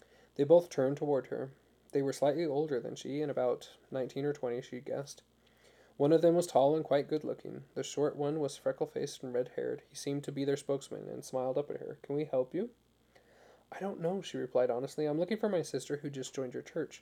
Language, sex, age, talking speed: English, male, 20-39, 225 wpm